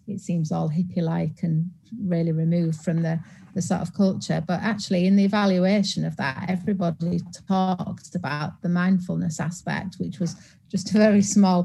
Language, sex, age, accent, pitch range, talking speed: English, female, 40-59, British, 165-185 Hz, 165 wpm